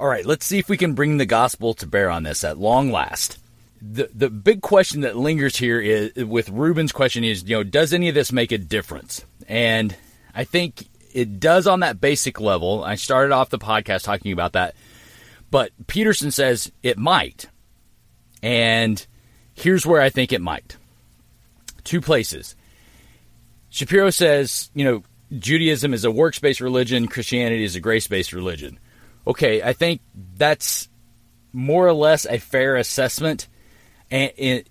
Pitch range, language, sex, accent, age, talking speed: 110-145 Hz, English, male, American, 40-59, 165 wpm